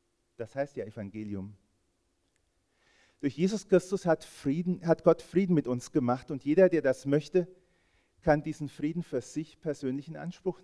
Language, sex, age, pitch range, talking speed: German, male, 40-59, 100-150 Hz, 150 wpm